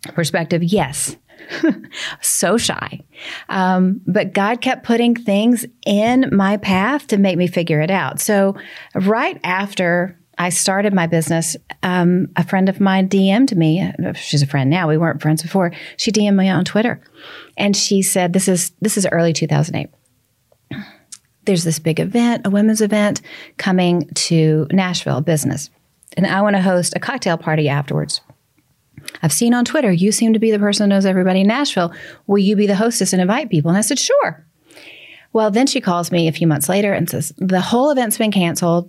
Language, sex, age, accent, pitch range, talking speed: English, female, 40-59, American, 165-215 Hz, 185 wpm